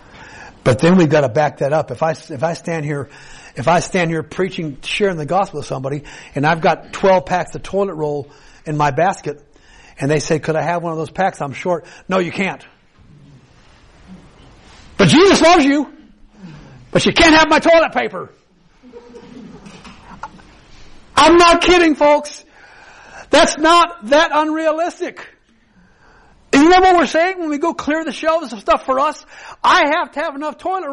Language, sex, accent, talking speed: English, male, American, 175 wpm